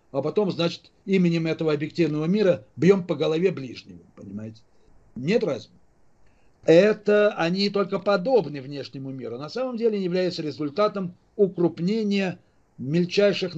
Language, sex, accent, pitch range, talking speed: Russian, male, native, 150-195 Hz, 120 wpm